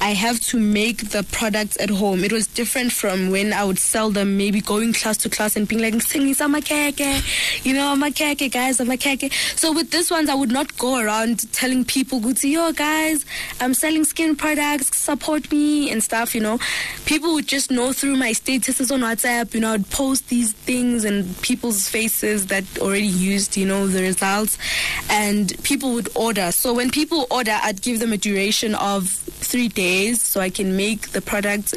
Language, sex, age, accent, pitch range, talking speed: English, female, 20-39, South African, 205-260 Hz, 205 wpm